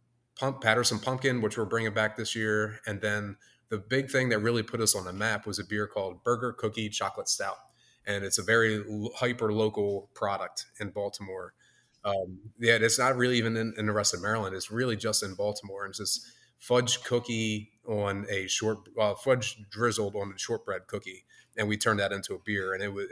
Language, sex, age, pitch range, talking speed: English, male, 20-39, 100-115 Hz, 210 wpm